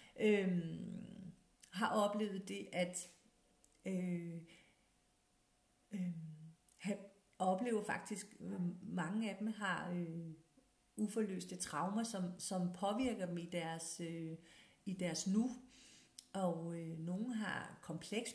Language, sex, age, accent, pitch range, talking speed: Danish, female, 50-69, native, 180-230 Hz, 105 wpm